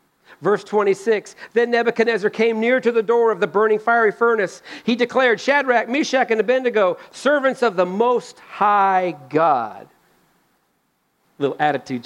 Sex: male